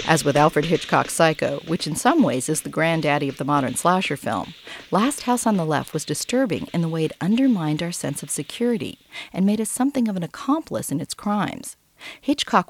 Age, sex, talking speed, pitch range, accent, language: 40-59, female, 210 wpm, 150-210 Hz, American, English